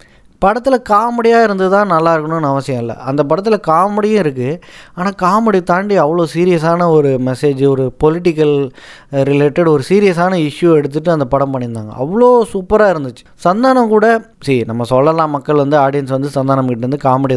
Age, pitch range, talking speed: 20-39, 140-195 Hz, 150 wpm